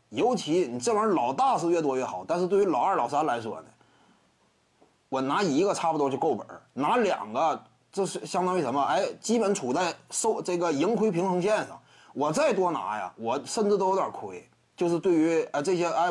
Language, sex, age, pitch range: Chinese, male, 20-39, 170-235 Hz